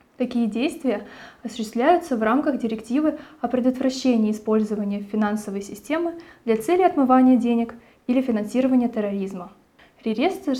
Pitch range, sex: 210-265 Hz, female